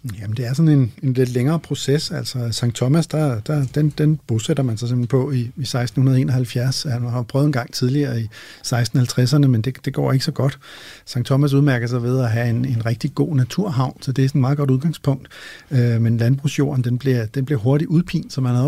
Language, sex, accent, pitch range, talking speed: Danish, male, native, 120-145 Hz, 230 wpm